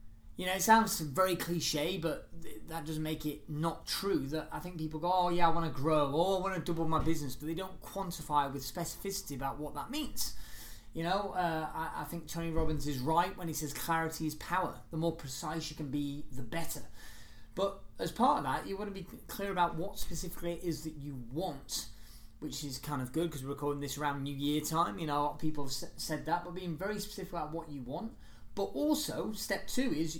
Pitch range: 145-175 Hz